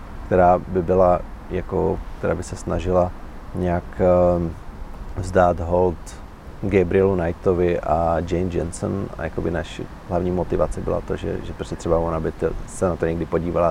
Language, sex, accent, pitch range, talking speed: Czech, male, native, 80-95 Hz, 150 wpm